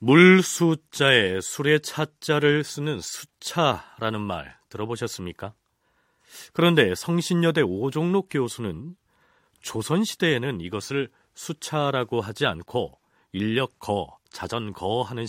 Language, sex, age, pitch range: Korean, male, 40-59, 105-160 Hz